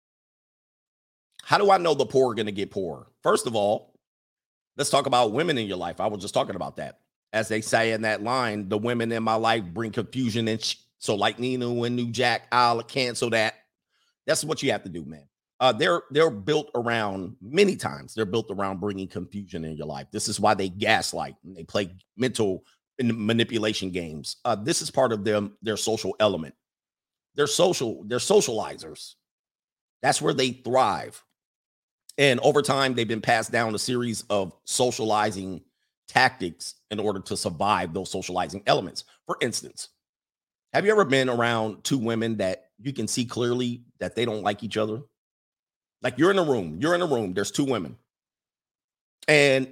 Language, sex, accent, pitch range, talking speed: English, male, American, 105-130 Hz, 185 wpm